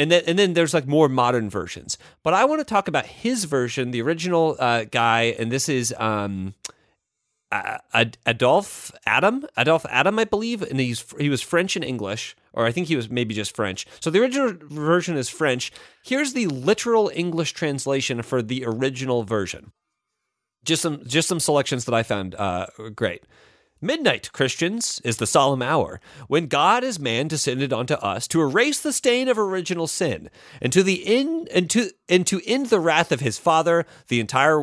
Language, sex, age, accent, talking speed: English, male, 30-49, American, 190 wpm